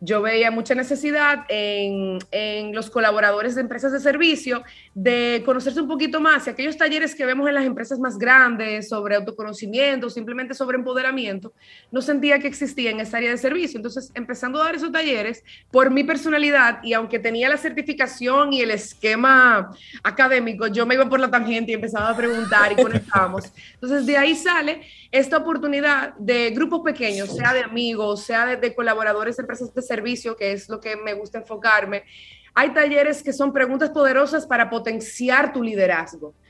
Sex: female